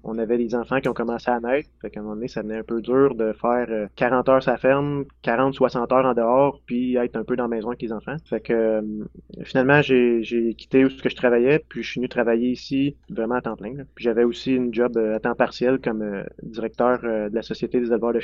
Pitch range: 115-130 Hz